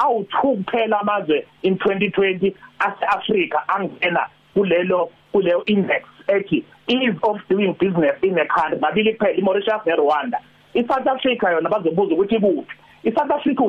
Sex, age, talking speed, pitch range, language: male, 40-59, 100 wpm, 180-225 Hz, English